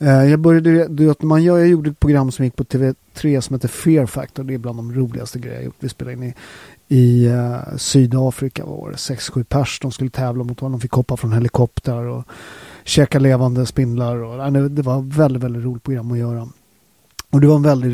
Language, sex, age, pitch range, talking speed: Swedish, male, 30-49, 125-145 Hz, 200 wpm